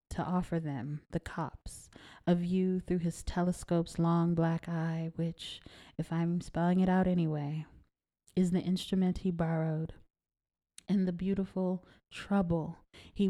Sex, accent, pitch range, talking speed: female, American, 170-185 Hz, 135 wpm